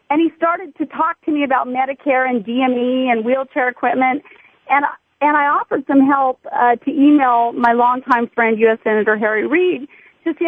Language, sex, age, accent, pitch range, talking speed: English, female, 40-59, American, 230-275 Hz, 190 wpm